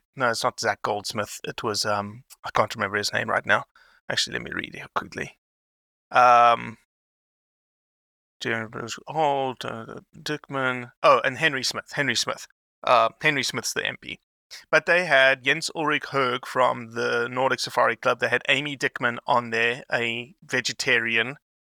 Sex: male